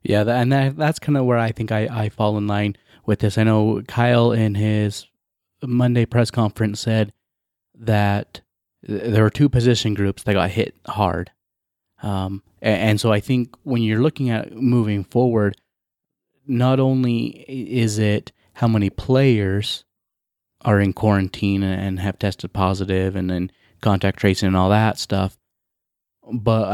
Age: 20-39